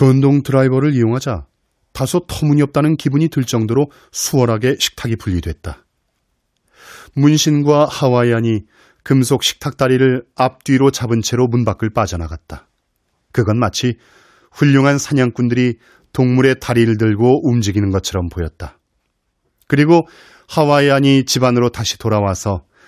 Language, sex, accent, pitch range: Korean, male, native, 105-140 Hz